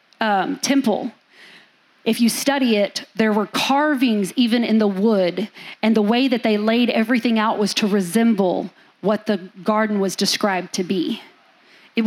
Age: 40-59